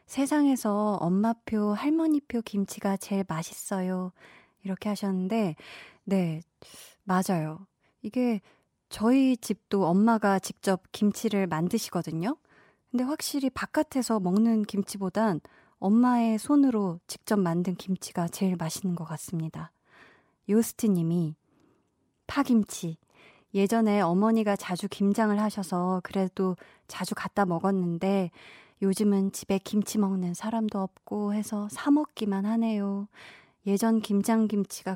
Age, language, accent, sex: 20-39, Korean, native, female